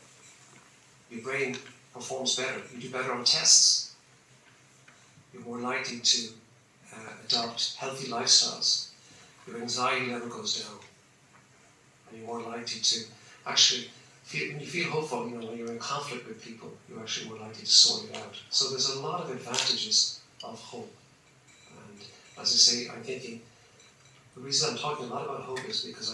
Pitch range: 115-130 Hz